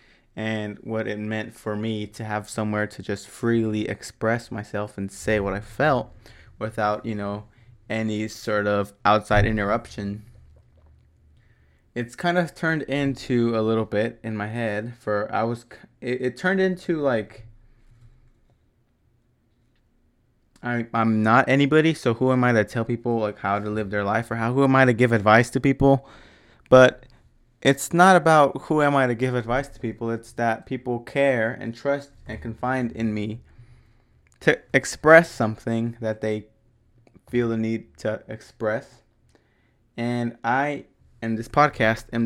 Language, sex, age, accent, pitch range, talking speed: English, male, 20-39, American, 110-120 Hz, 160 wpm